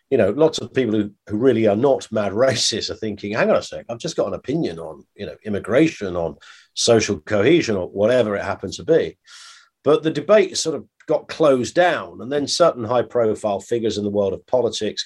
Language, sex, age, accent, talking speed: English, male, 50-69, British, 220 wpm